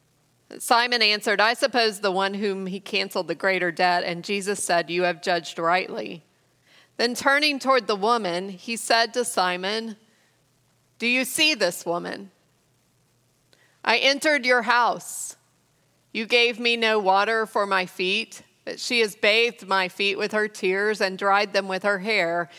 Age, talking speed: 40-59, 160 wpm